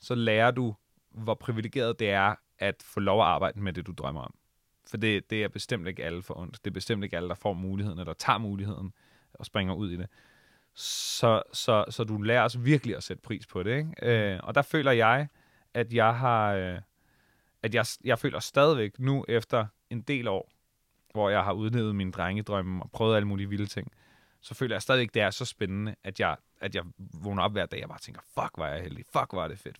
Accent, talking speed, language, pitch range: native, 230 wpm, Danish, 100-130 Hz